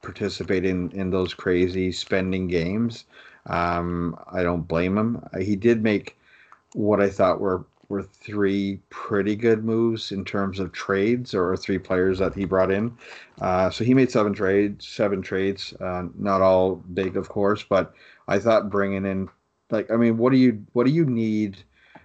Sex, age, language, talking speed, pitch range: male, 40-59, English, 175 wpm, 90-100 Hz